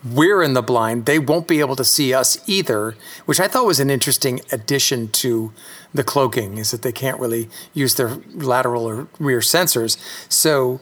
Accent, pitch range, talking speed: American, 130-170 Hz, 190 wpm